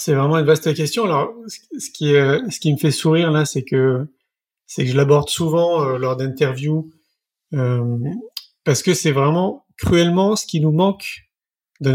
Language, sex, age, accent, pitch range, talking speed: French, male, 30-49, French, 135-165 Hz, 180 wpm